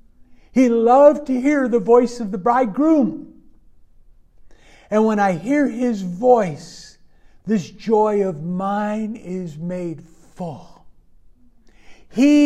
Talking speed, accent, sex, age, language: 110 wpm, American, male, 60-79, English